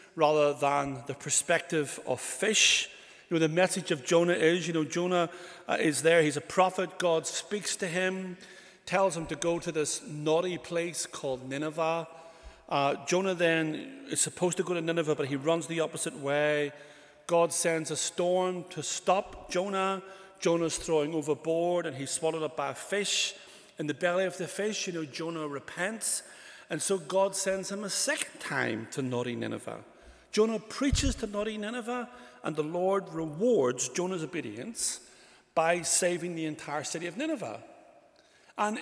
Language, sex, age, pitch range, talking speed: English, male, 40-59, 155-205 Hz, 165 wpm